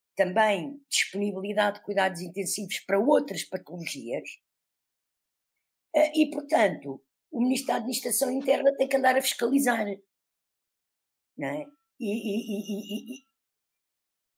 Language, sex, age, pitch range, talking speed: Portuguese, female, 50-69, 185-250 Hz, 90 wpm